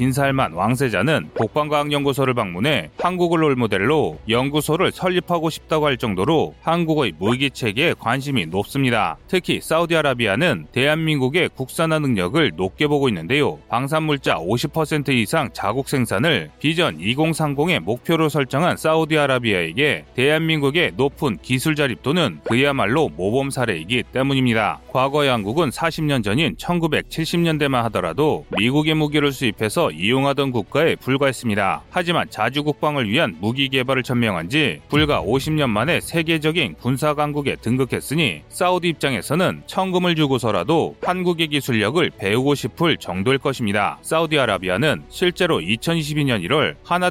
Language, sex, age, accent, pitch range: Korean, male, 30-49, native, 125-160 Hz